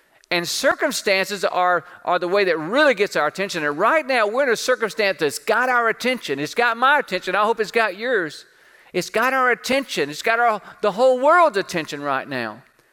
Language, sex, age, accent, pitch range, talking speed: English, male, 40-59, American, 165-230 Hz, 200 wpm